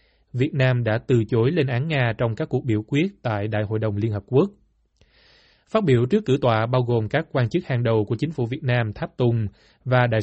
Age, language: 20-39, Vietnamese